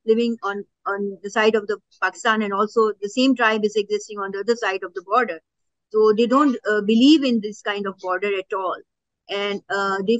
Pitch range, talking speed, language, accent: 200-235 Hz, 220 wpm, English, Indian